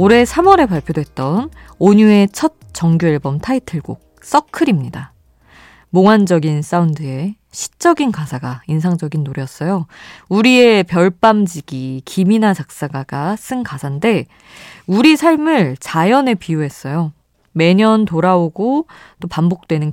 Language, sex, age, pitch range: Korean, female, 20-39, 150-225 Hz